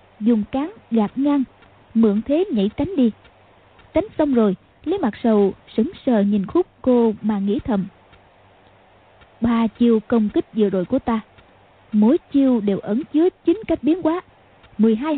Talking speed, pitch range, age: 160 wpm, 195-260 Hz, 20-39